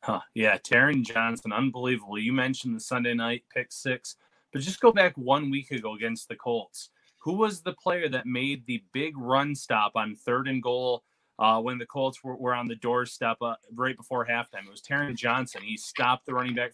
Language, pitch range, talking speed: English, 120-140 Hz, 210 wpm